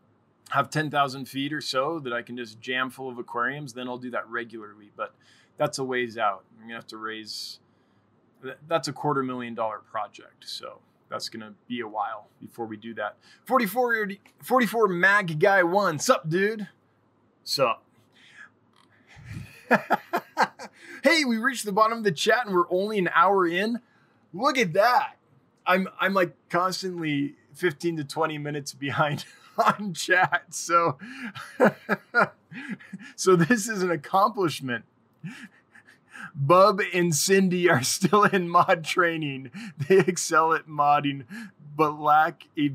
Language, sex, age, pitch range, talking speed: English, male, 20-39, 130-185 Hz, 145 wpm